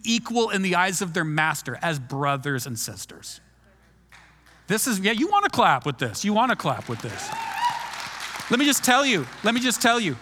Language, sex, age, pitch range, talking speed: English, male, 40-59, 140-200 Hz, 210 wpm